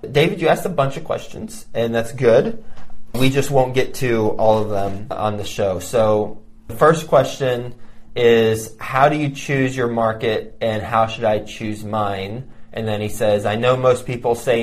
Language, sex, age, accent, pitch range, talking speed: English, male, 20-39, American, 105-120 Hz, 195 wpm